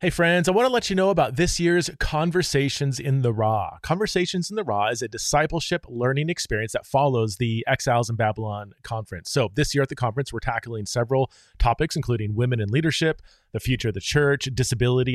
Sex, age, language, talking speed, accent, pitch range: male, 30-49, English, 200 wpm, American, 115-150 Hz